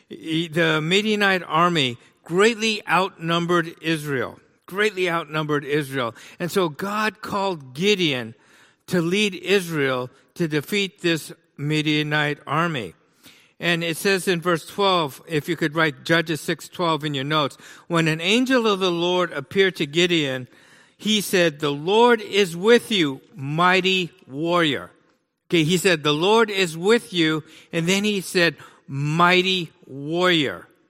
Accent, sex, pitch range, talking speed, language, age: American, male, 165-210 Hz, 135 wpm, English, 60-79